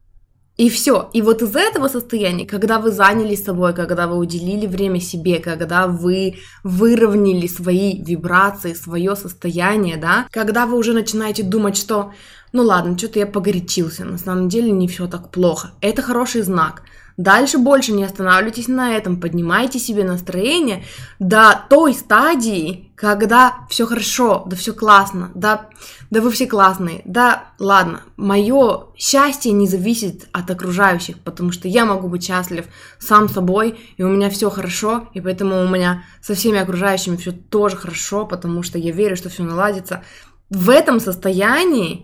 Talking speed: 155 wpm